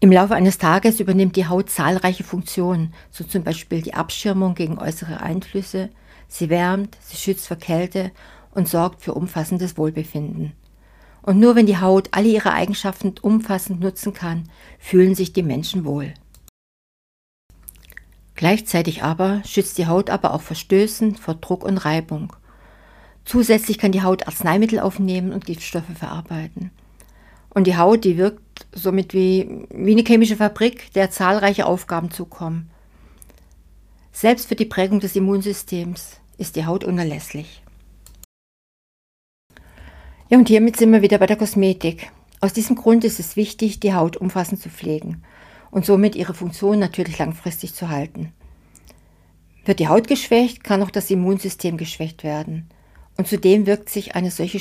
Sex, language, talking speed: female, German, 150 wpm